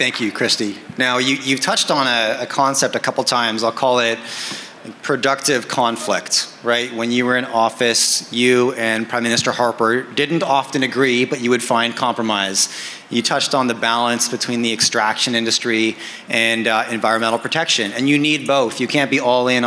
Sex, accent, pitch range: male, American, 115-150 Hz